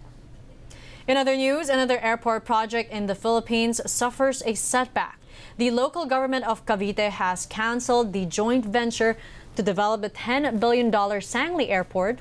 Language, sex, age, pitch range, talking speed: English, female, 20-39, 195-245 Hz, 145 wpm